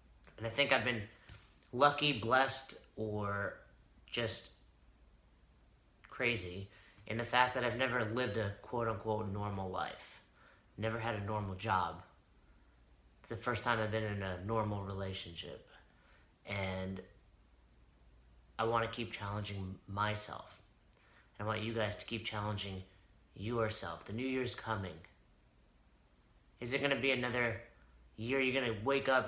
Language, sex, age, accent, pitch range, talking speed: English, male, 30-49, American, 100-120 Hz, 140 wpm